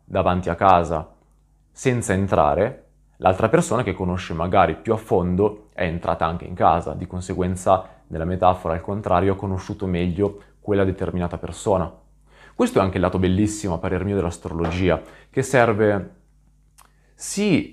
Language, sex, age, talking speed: Italian, male, 30-49, 145 wpm